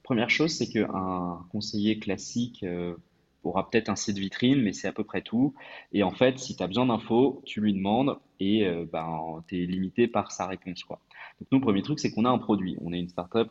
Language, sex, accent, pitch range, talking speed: French, male, French, 95-120 Hz, 230 wpm